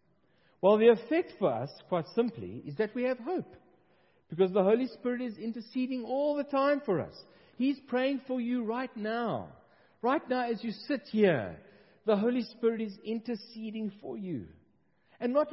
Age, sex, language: 50-69, male, English